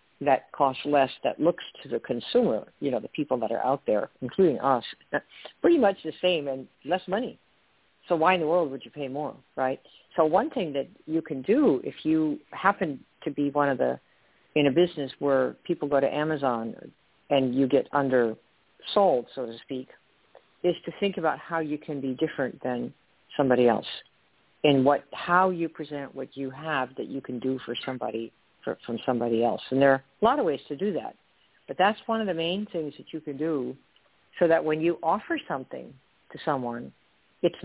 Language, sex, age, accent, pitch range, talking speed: English, female, 50-69, American, 130-160 Hz, 200 wpm